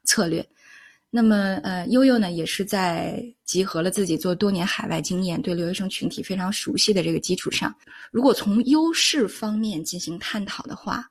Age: 20-39